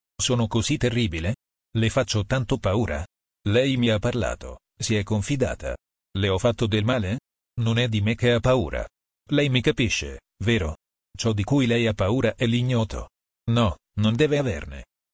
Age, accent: 40-59, native